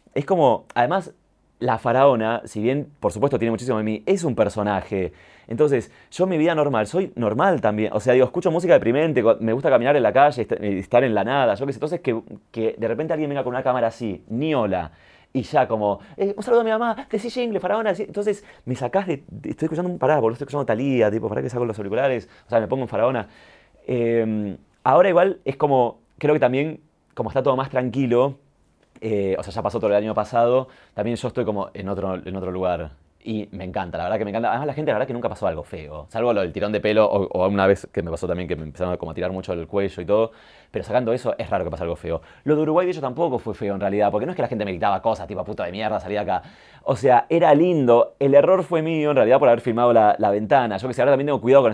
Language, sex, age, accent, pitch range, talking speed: Spanish, male, 30-49, Argentinian, 100-140 Hz, 265 wpm